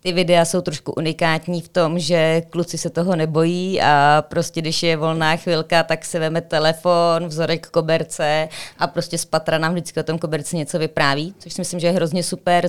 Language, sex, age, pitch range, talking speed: Czech, female, 20-39, 155-175 Hz, 200 wpm